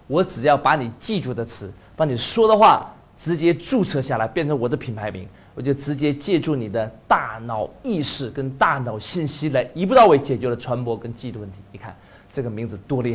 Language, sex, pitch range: Chinese, male, 115-175 Hz